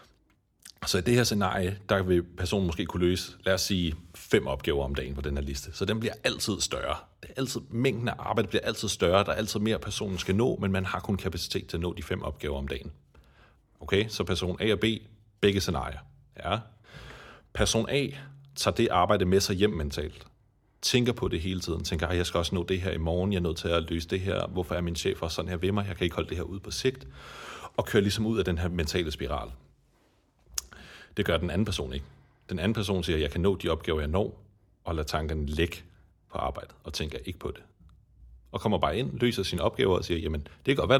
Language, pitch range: Danish, 80-105 Hz